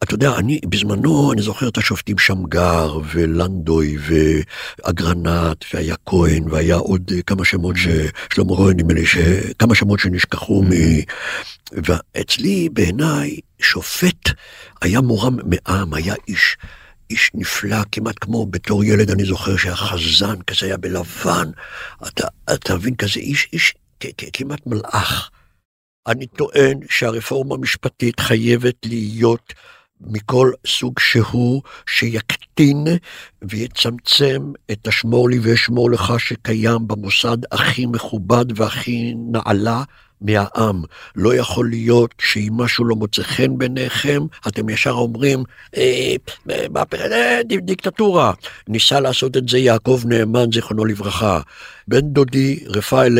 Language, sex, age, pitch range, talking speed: Hebrew, male, 60-79, 95-125 Hz, 115 wpm